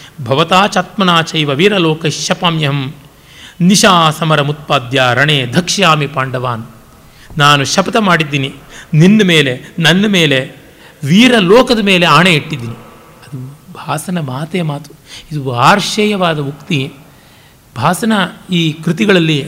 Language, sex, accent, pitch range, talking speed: Kannada, male, native, 145-195 Hz, 95 wpm